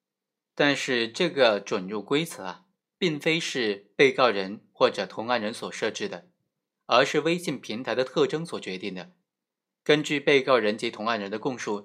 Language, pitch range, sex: Chinese, 105-155 Hz, male